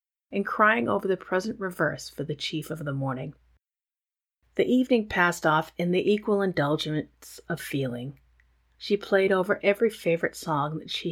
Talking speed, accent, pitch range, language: 160 wpm, American, 150-195 Hz, English